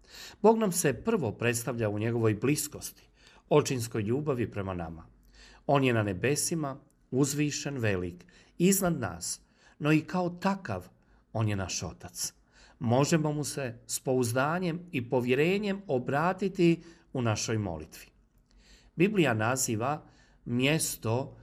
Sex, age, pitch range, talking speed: male, 40-59, 110-160 Hz, 120 wpm